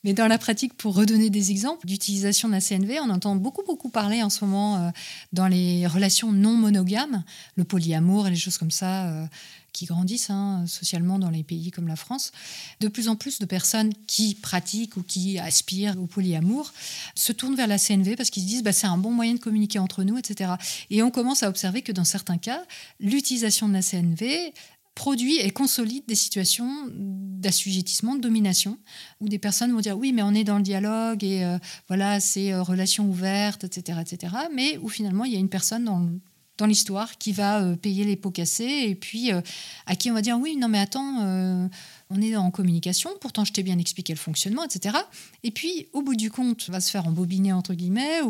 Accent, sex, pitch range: French, female, 185-225 Hz